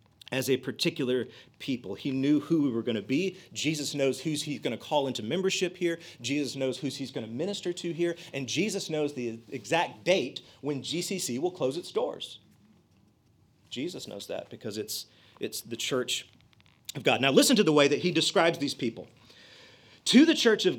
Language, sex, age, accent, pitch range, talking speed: English, male, 40-59, American, 120-195 Hz, 195 wpm